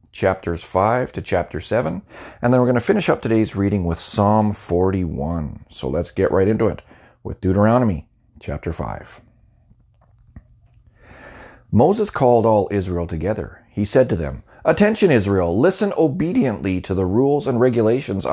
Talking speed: 145 wpm